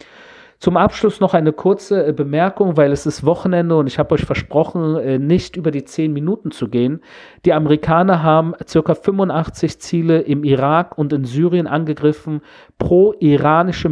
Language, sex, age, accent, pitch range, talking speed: German, male, 40-59, German, 140-175 Hz, 150 wpm